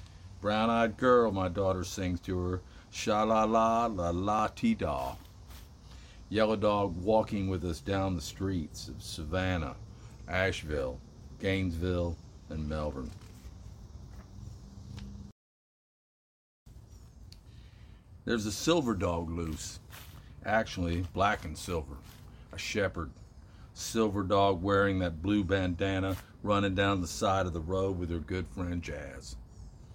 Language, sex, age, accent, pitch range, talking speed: English, male, 50-69, American, 85-105 Hz, 100 wpm